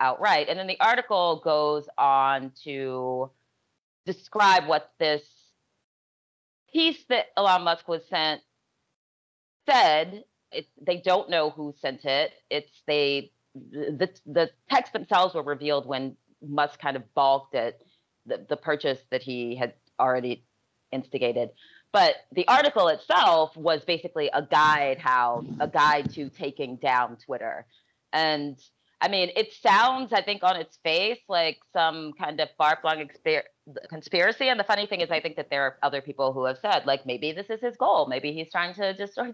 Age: 30-49